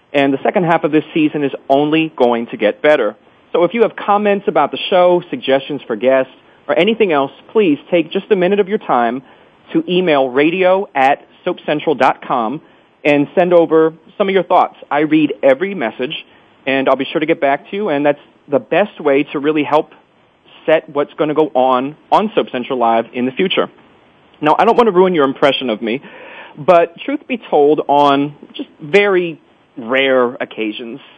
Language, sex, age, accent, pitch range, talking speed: English, male, 40-59, American, 135-180 Hz, 190 wpm